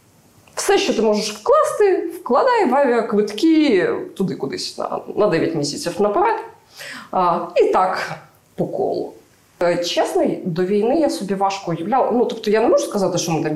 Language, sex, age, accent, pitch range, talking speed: Ukrainian, female, 20-39, native, 155-225 Hz, 145 wpm